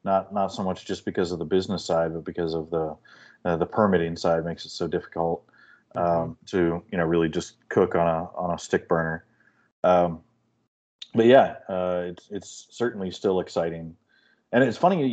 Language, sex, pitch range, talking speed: English, male, 85-100 Hz, 190 wpm